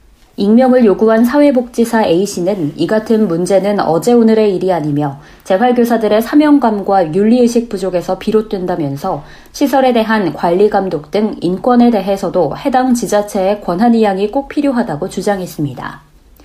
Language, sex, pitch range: Korean, female, 195-245 Hz